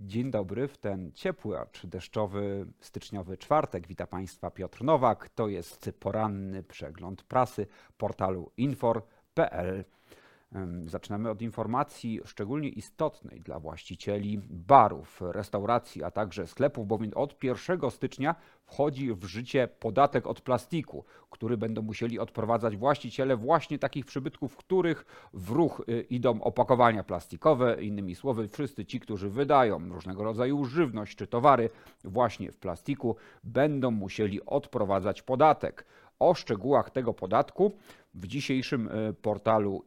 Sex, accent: male, native